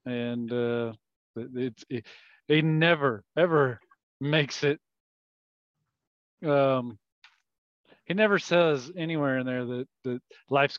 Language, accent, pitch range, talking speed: English, American, 125-145 Hz, 110 wpm